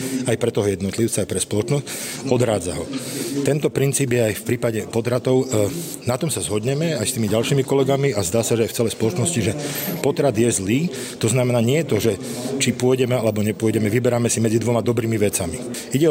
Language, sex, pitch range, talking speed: Slovak, male, 110-130 Hz, 200 wpm